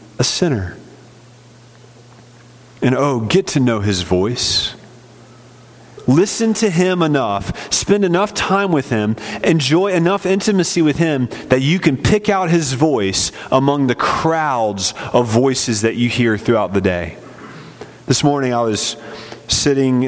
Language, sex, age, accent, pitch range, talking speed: English, male, 30-49, American, 105-150 Hz, 135 wpm